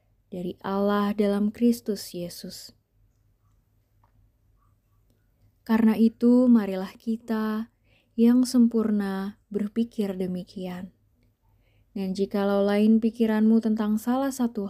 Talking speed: 80 wpm